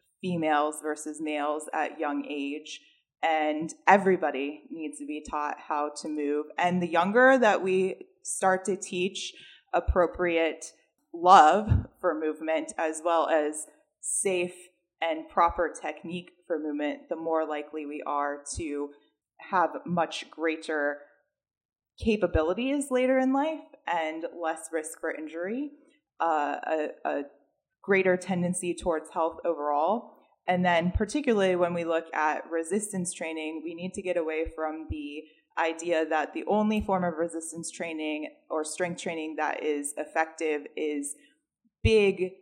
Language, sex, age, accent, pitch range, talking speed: English, female, 20-39, American, 155-180 Hz, 130 wpm